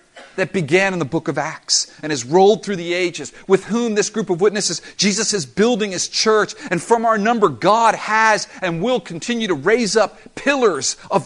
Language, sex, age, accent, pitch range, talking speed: English, male, 50-69, American, 185-235 Hz, 205 wpm